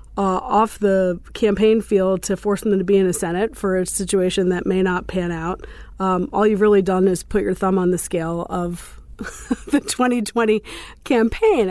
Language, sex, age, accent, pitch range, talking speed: English, female, 40-59, American, 190-220 Hz, 190 wpm